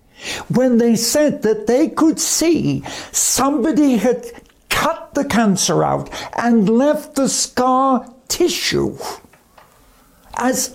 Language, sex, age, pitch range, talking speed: English, male, 60-79, 175-265 Hz, 105 wpm